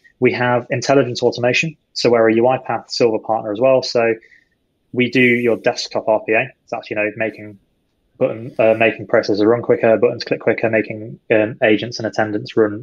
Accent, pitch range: British, 110-125 Hz